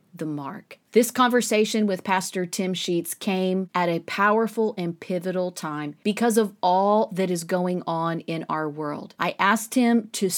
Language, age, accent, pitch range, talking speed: English, 40-59, American, 165-200 Hz, 170 wpm